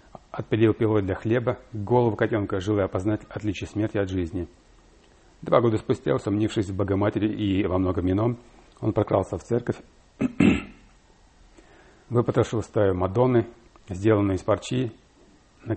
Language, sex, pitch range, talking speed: English, male, 95-115 Hz, 130 wpm